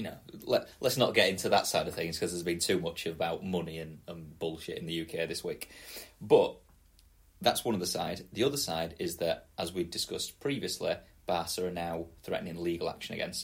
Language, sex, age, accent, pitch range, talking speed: English, male, 30-49, British, 80-90 Hz, 215 wpm